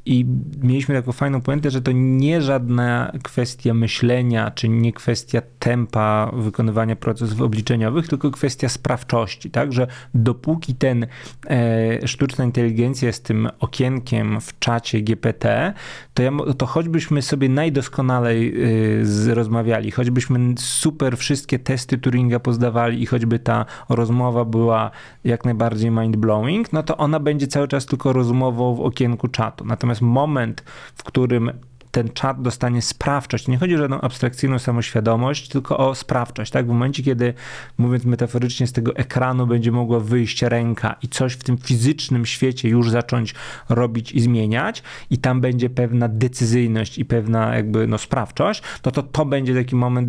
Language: Polish